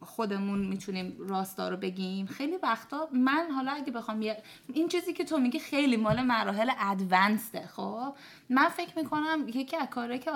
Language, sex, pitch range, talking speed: Persian, female, 215-280 Hz, 155 wpm